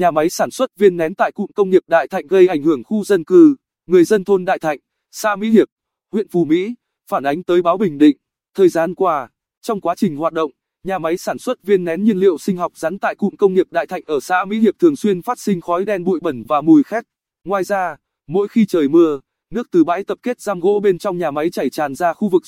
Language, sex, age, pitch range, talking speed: Vietnamese, male, 20-39, 170-220 Hz, 260 wpm